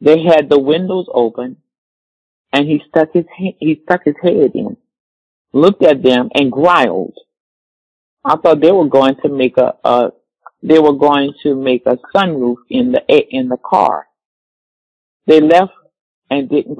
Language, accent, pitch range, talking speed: English, American, 130-160 Hz, 160 wpm